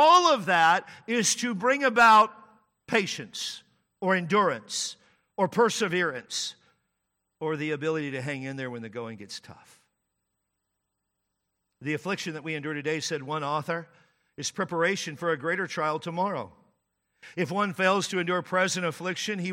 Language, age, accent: English, 50-69, American